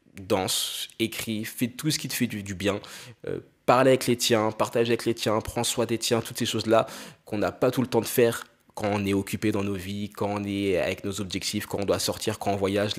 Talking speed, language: 255 wpm, French